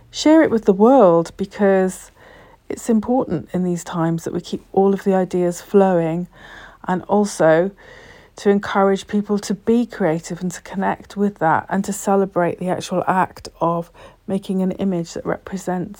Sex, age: female, 40-59